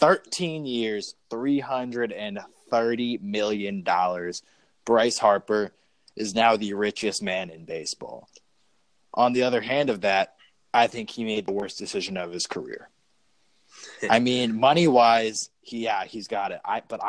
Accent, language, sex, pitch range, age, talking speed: American, English, male, 100-120 Hz, 20-39, 135 wpm